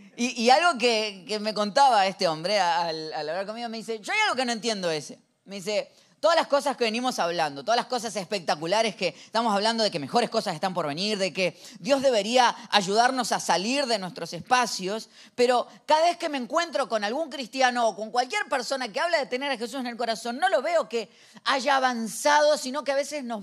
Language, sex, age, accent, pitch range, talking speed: Spanish, female, 20-39, Argentinian, 205-275 Hz, 225 wpm